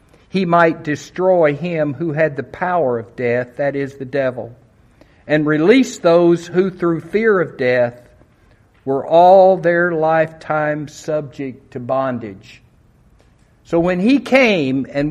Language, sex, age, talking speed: English, male, 60-79, 135 wpm